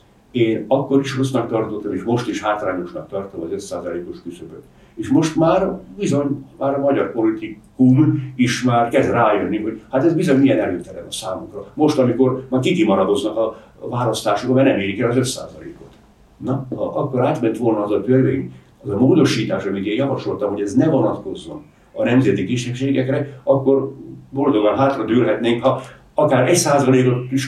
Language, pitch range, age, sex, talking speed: English, 105-135 Hz, 60-79, male, 160 wpm